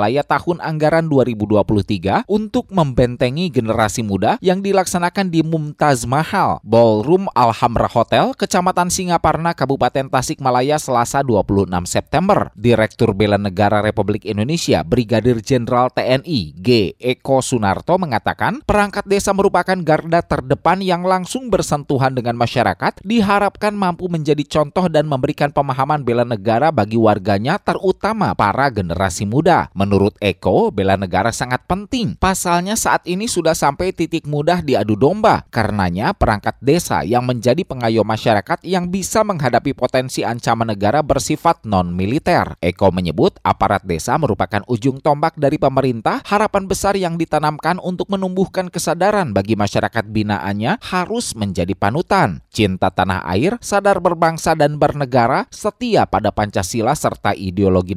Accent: native